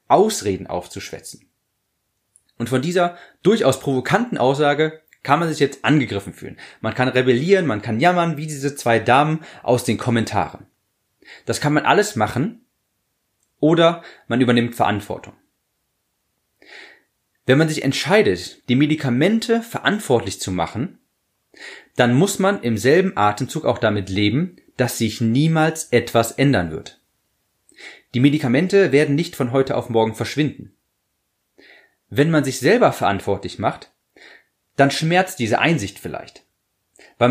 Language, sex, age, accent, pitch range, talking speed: German, male, 30-49, German, 115-155 Hz, 130 wpm